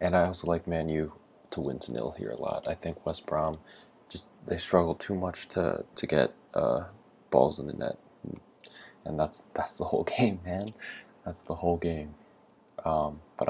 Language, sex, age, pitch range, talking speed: English, male, 20-39, 75-85 Hz, 190 wpm